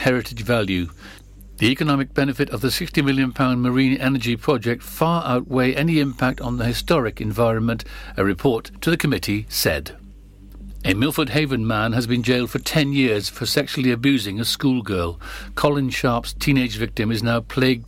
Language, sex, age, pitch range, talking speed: English, male, 60-79, 105-130 Hz, 165 wpm